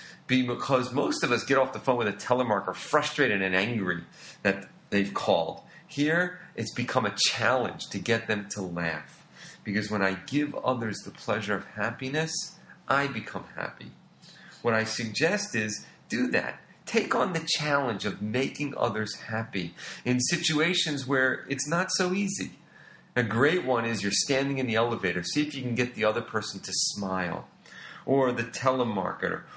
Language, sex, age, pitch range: English, male, 40-59, 100-135 Hz